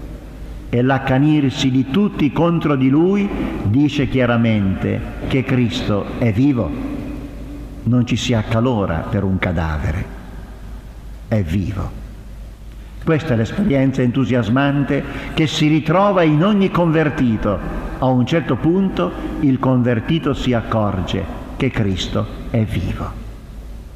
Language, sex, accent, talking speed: Italian, male, native, 110 wpm